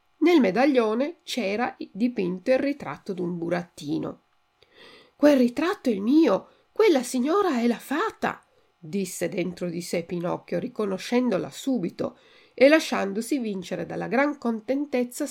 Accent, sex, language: native, female, Italian